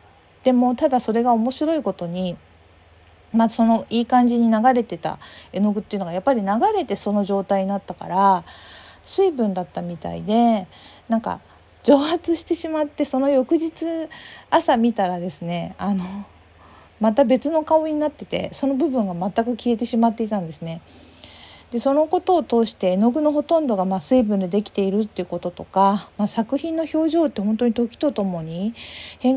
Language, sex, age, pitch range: Japanese, female, 40-59, 185-260 Hz